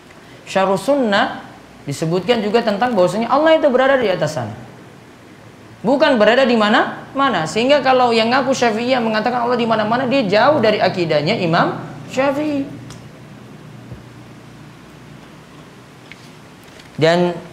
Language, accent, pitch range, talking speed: Indonesian, native, 155-225 Hz, 115 wpm